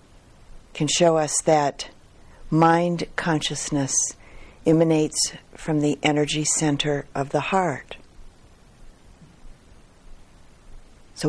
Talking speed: 80 wpm